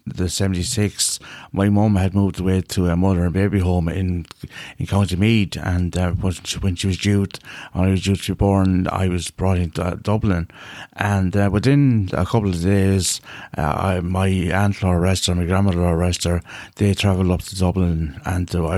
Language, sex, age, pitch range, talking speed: English, male, 60-79, 90-100 Hz, 200 wpm